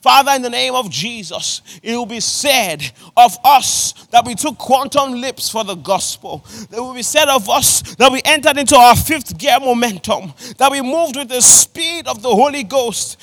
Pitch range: 220-300 Hz